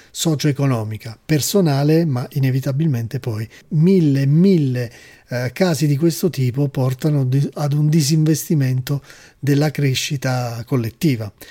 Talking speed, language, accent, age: 100 wpm, Italian, native, 40-59